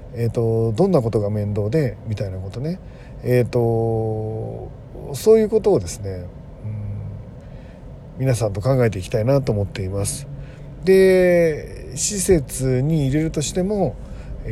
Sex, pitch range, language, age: male, 105-140 Hz, Japanese, 40-59